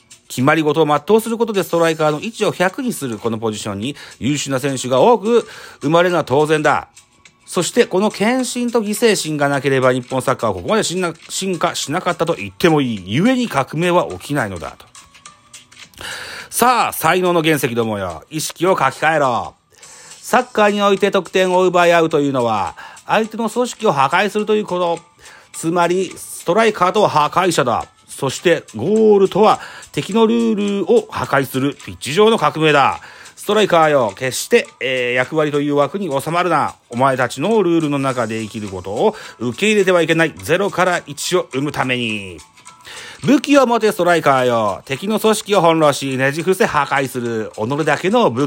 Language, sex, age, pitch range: Japanese, male, 40-59, 135-200 Hz